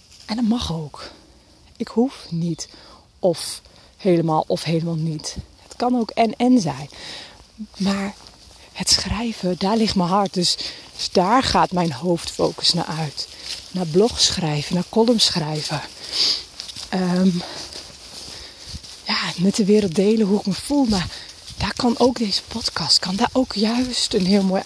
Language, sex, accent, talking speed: Dutch, female, Dutch, 150 wpm